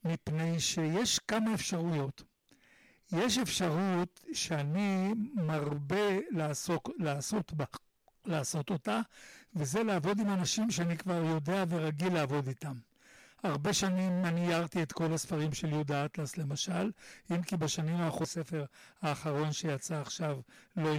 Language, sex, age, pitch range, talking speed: Hebrew, male, 60-79, 150-190 Hz, 125 wpm